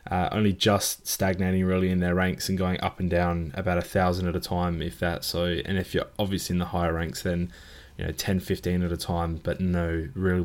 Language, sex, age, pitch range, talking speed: English, male, 20-39, 90-105 Hz, 235 wpm